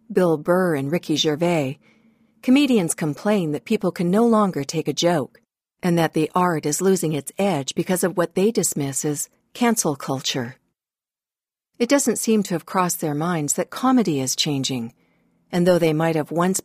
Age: 50-69